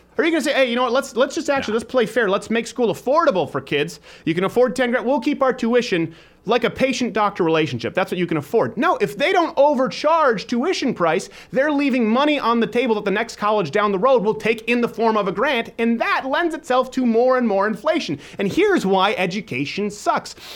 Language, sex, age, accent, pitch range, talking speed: English, male, 30-49, American, 155-250 Hz, 240 wpm